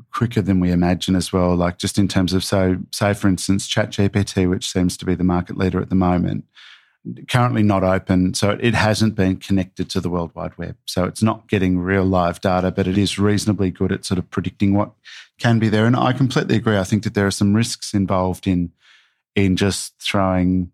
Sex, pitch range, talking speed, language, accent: male, 95-105 Hz, 225 wpm, English, Australian